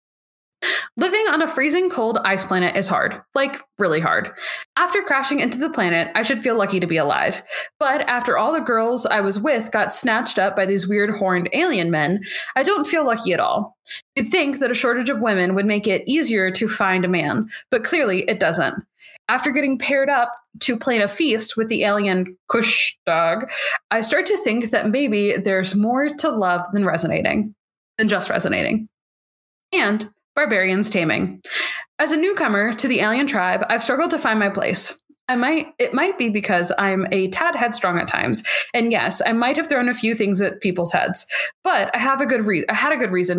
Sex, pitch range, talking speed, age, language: female, 195-275 Hz, 200 wpm, 20-39, English